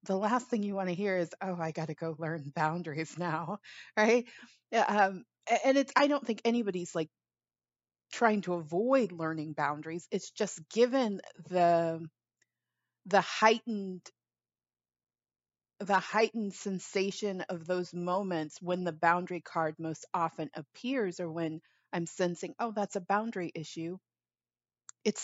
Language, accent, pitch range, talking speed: English, American, 165-210 Hz, 140 wpm